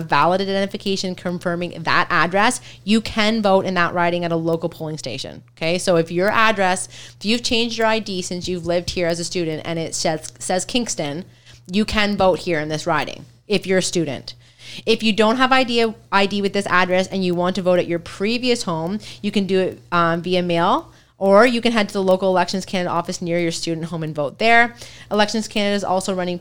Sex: female